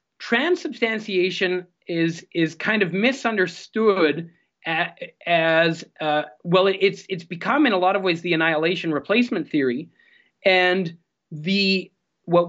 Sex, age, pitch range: male, 30-49, 155-200 Hz